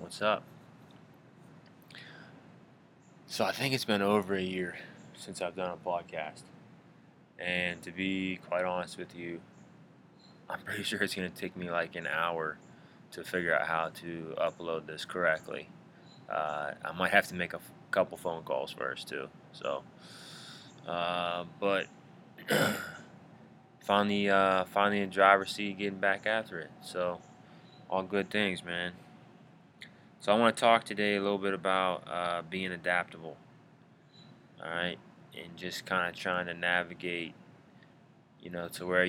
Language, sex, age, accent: English, male, 20-39, American